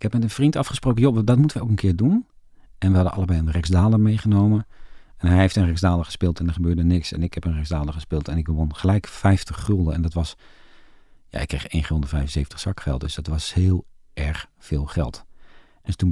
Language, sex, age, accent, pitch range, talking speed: Dutch, male, 40-59, Dutch, 80-100 Hz, 225 wpm